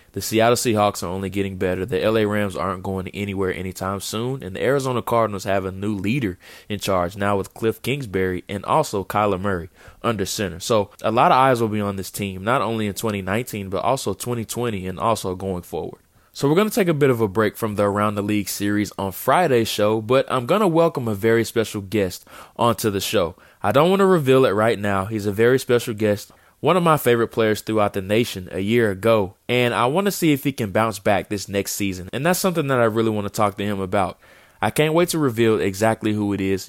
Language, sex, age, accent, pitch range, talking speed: English, male, 20-39, American, 100-120 Hz, 235 wpm